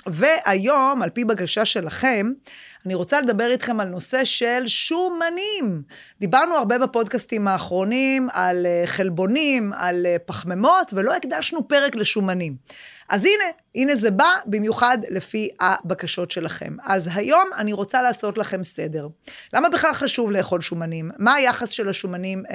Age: 30-49